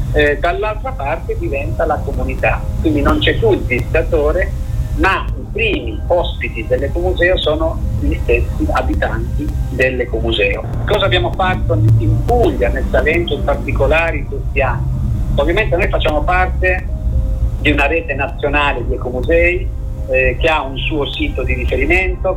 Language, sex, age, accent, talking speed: Italian, male, 50-69, native, 135 wpm